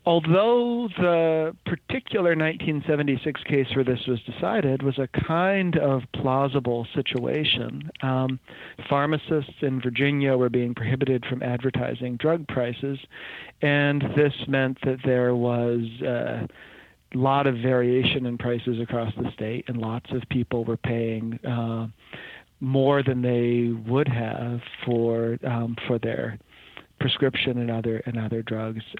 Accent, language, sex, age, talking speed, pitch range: American, English, male, 40-59, 130 wpm, 120-145 Hz